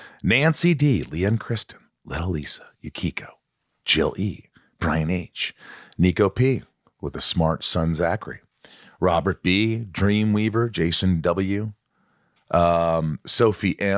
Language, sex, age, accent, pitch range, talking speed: English, male, 40-59, American, 90-125 Hz, 105 wpm